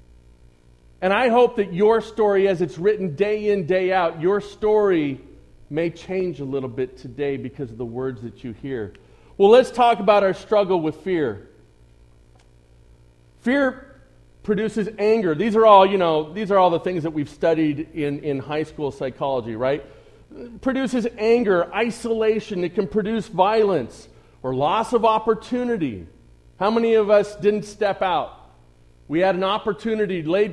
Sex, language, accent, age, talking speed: male, English, American, 40-59, 160 wpm